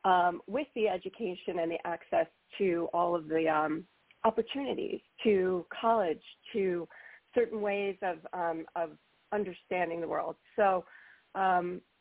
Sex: female